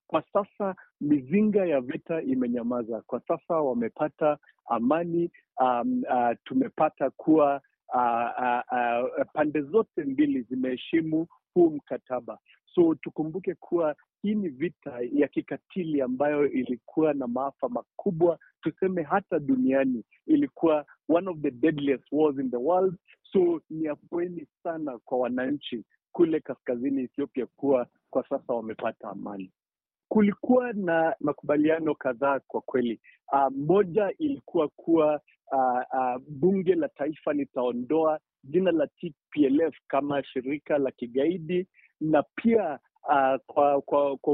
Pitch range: 135-185 Hz